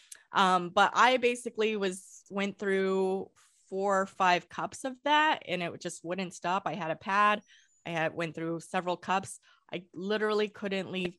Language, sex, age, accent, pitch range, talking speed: English, female, 20-39, American, 165-205 Hz, 170 wpm